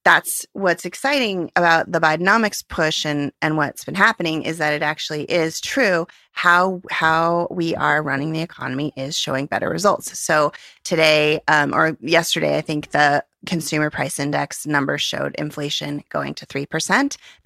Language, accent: English, American